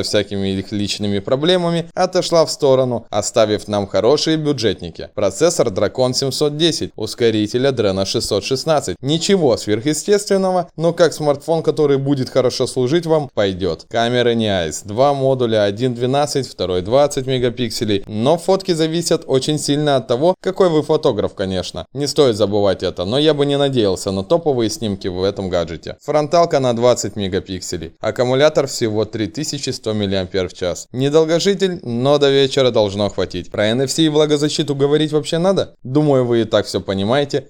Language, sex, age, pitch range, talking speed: Russian, male, 20-39, 110-150 Hz, 145 wpm